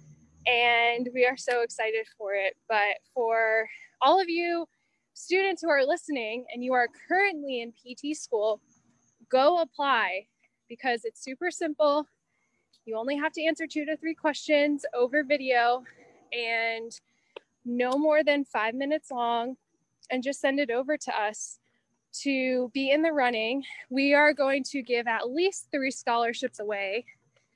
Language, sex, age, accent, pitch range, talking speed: English, female, 10-29, American, 235-295 Hz, 150 wpm